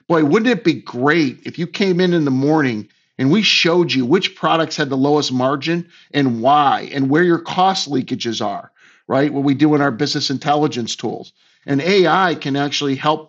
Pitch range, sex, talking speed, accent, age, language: 140-170 Hz, male, 200 wpm, American, 50-69, English